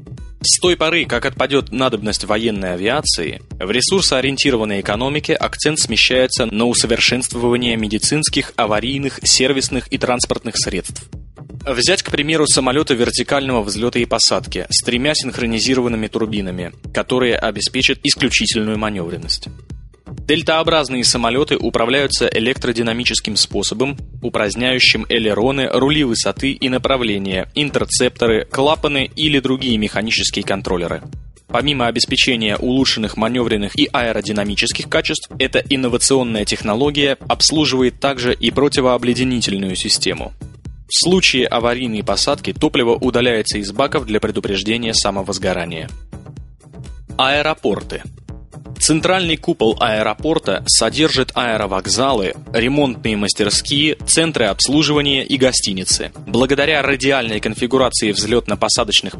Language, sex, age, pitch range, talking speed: Russian, male, 20-39, 110-140 Hz, 95 wpm